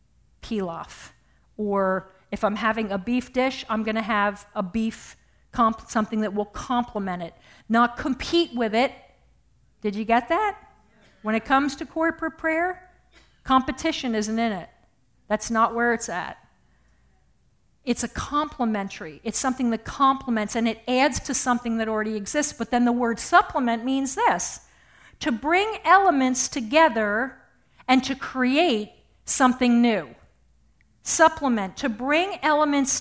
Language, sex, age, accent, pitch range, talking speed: English, female, 50-69, American, 215-275 Hz, 140 wpm